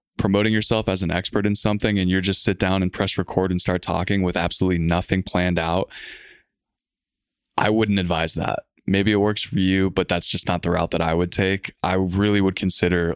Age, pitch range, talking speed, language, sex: 20-39, 90-105 Hz, 210 wpm, English, male